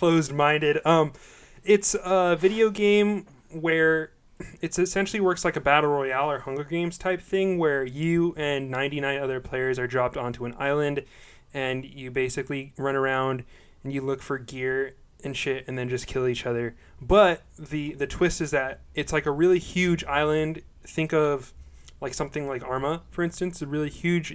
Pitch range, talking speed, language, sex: 130-160 Hz, 175 wpm, English, male